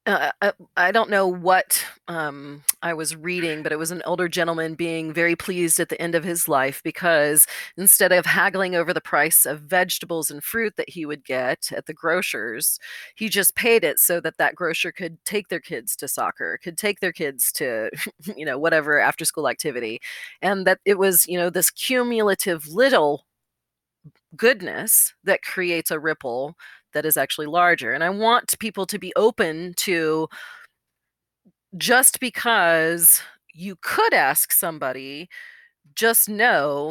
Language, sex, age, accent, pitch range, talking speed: English, female, 30-49, American, 160-200 Hz, 165 wpm